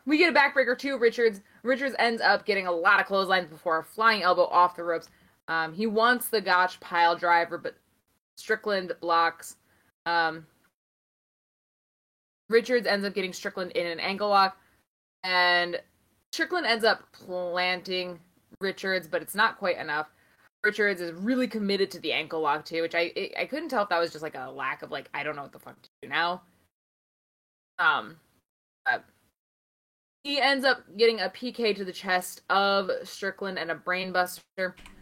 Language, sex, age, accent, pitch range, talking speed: English, female, 20-39, American, 175-220 Hz, 175 wpm